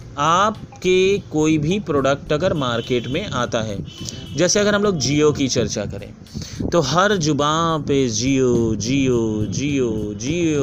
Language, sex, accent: Hindi, male, native